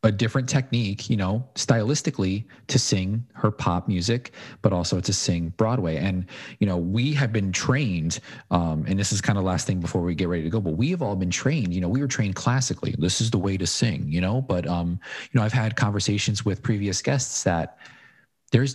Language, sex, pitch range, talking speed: English, male, 90-120 Hz, 225 wpm